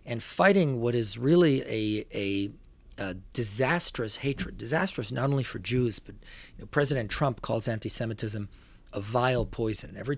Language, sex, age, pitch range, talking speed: English, male, 40-59, 105-155 Hz, 155 wpm